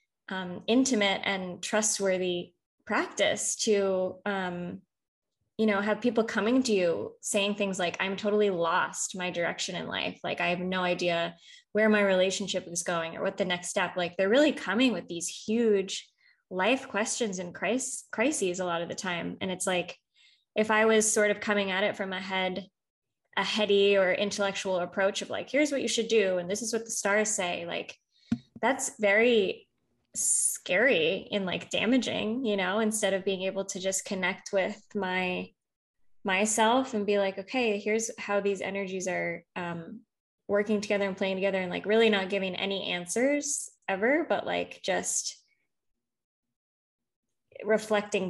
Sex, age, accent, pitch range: female, 20-39, American, 185-220 Hz